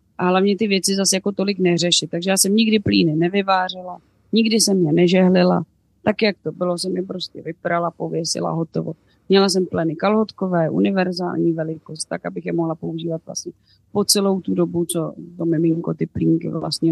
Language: Czech